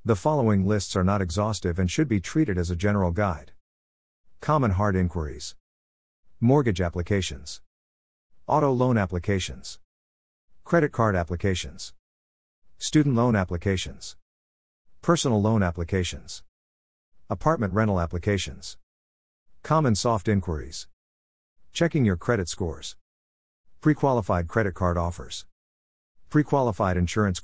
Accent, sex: American, male